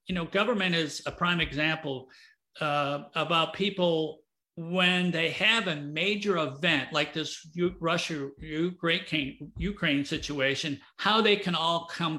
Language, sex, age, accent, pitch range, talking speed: English, male, 50-69, American, 155-200 Hz, 135 wpm